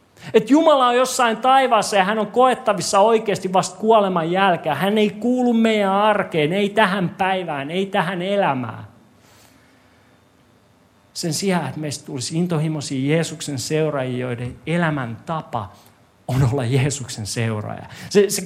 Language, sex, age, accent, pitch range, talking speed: Finnish, male, 40-59, native, 125-195 Hz, 130 wpm